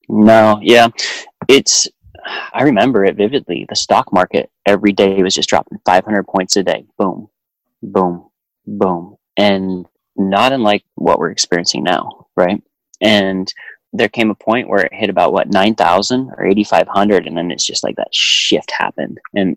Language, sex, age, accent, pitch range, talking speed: English, male, 30-49, American, 95-110 Hz, 160 wpm